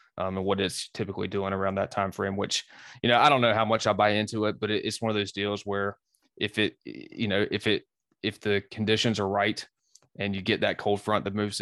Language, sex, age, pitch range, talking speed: English, male, 20-39, 100-110 Hz, 255 wpm